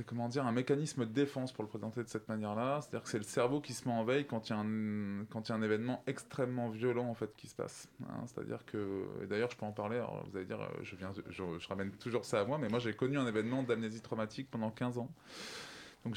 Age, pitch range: 20-39, 105-125 Hz